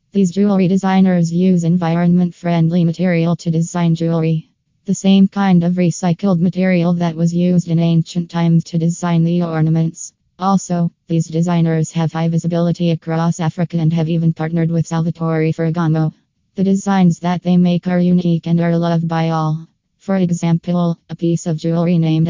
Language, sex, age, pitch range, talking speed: English, female, 20-39, 165-180 Hz, 160 wpm